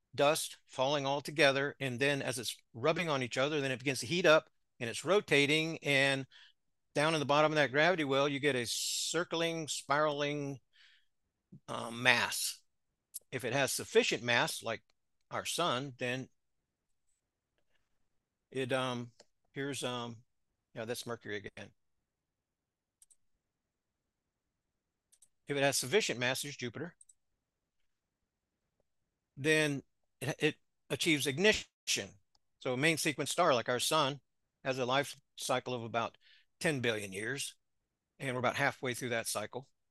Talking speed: 135 wpm